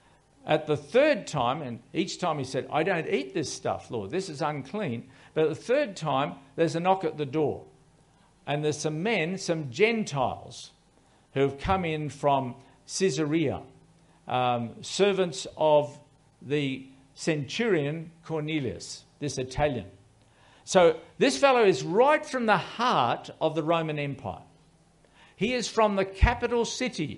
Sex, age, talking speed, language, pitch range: male, 50-69, 145 wpm, English, 145-200 Hz